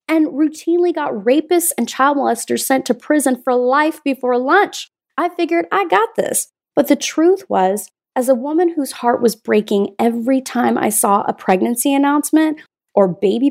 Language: English